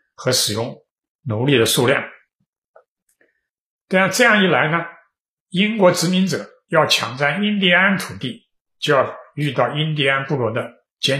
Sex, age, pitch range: male, 60-79, 130-190 Hz